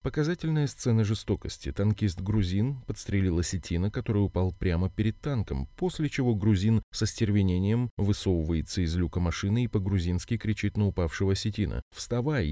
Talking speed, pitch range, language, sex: 130 wpm, 90-115 Hz, Russian, male